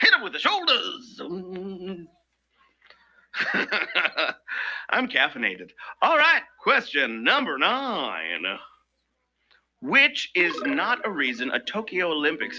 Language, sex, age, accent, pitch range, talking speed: English, male, 50-69, American, 165-275 Hz, 95 wpm